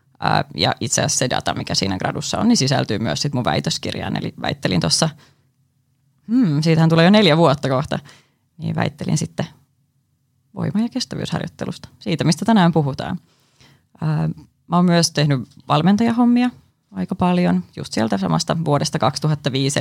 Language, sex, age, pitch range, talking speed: Finnish, female, 20-39, 140-180 Hz, 140 wpm